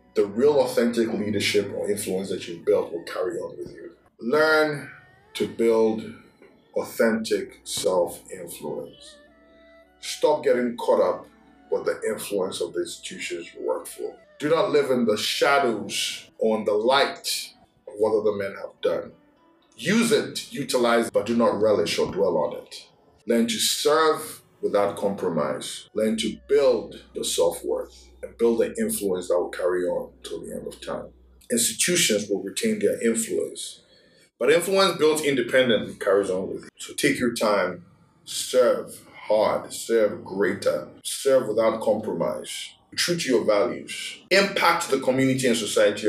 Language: English